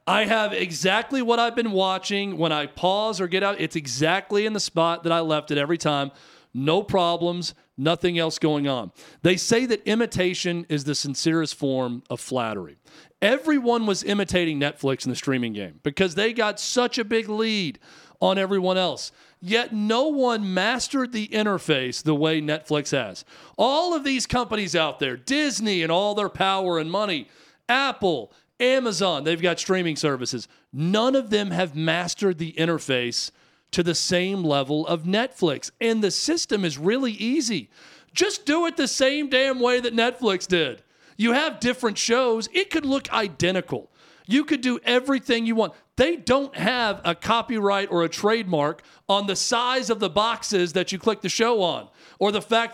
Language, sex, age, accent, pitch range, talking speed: English, male, 40-59, American, 160-225 Hz, 175 wpm